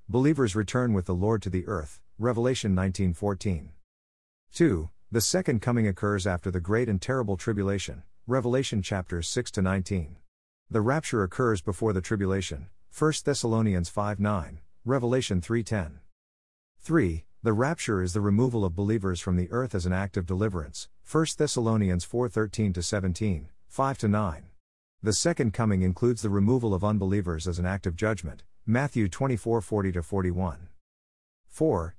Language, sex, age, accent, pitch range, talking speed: English, male, 50-69, American, 90-115 Hz, 145 wpm